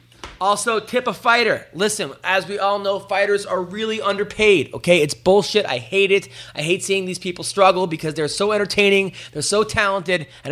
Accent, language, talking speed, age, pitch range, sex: American, English, 190 wpm, 30-49, 165-215 Hz, male